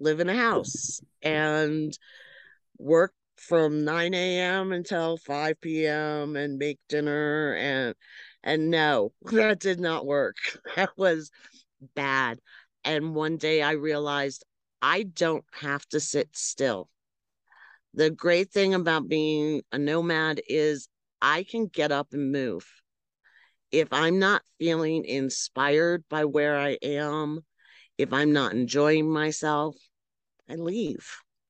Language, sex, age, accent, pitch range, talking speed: English, female, 50-69, American, 145-170 Hz, 125 wpm